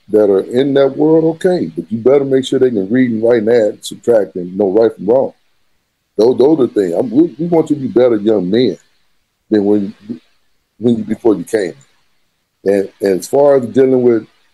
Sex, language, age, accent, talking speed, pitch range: male, English, 40-59, American, 220 wpm, 105-135 Hz